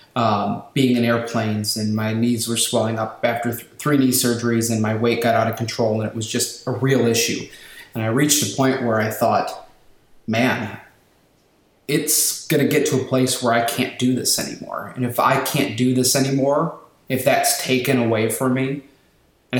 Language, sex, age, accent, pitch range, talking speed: English, male, 30-49, American, 115-130 Hz, 195 wpm